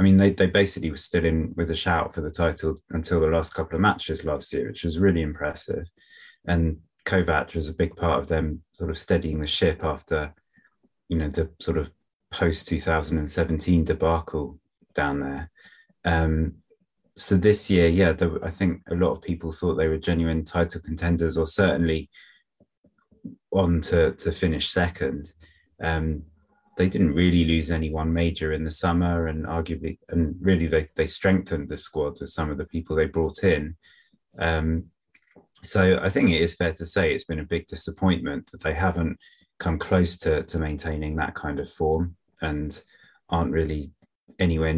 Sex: male